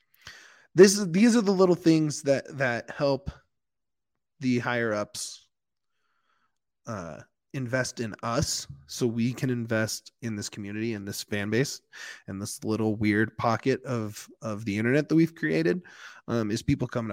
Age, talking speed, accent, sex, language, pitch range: 20-39, 155 wpm, American, male, English, 110-130 Hz